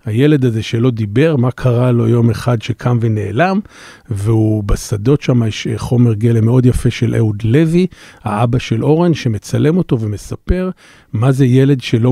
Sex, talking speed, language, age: male, 160 wpm, Hebrew, 50-69